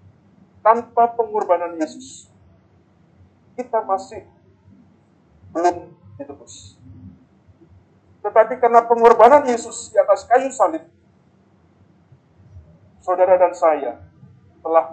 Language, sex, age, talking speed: Indonesian, male, 50-69, 75 wpm